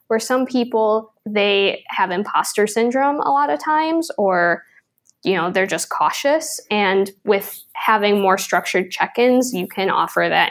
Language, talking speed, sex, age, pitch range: English, 155 wpm, female, 10-29, 180-225 Hz